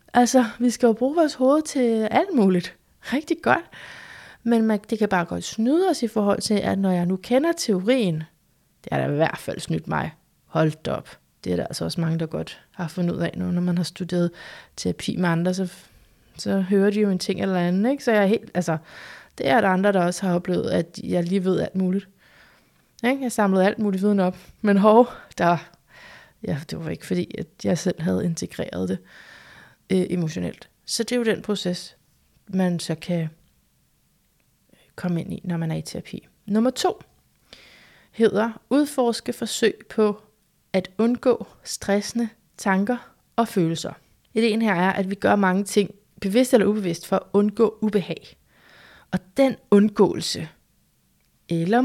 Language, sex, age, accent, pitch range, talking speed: Danish, female, 30-49, native, 180-225 Hz, 180 wpm